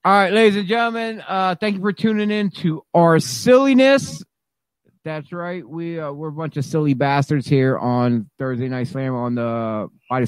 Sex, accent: male, American